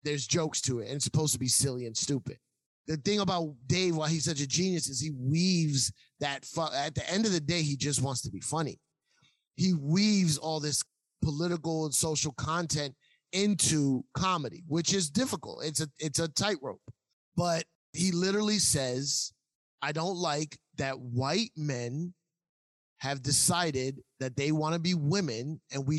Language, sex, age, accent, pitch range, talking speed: English, male, 30-49, American, 140-195 Hz, 170 wpm